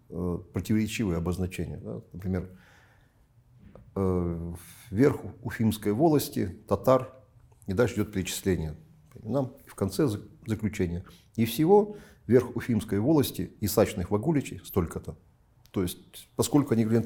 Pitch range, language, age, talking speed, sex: 90-120 Hz, Russian, 50-69, 105 wpm, male